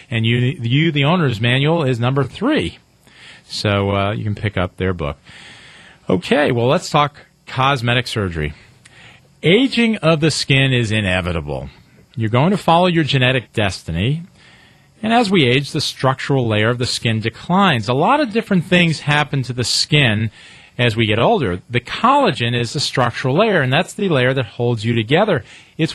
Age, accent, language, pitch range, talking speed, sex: 40-59, American, English, 120-165 Hz, 175 wpm, male